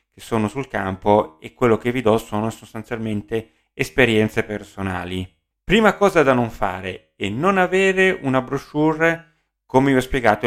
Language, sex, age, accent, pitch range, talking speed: Italian, male, 30-49, native, 105-150 Hz, 155 wpm